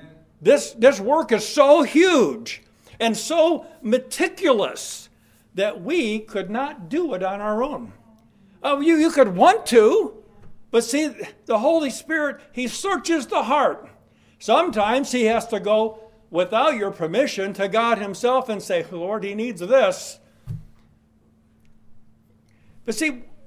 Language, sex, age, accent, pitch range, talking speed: English, male, 60-79, American, 205-265 Hz, 135 wpm